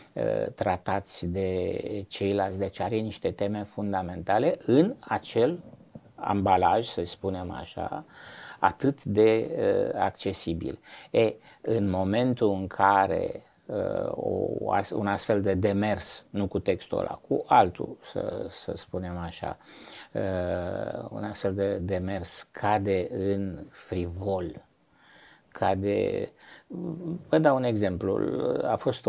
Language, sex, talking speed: Romanian, male, 100 wpm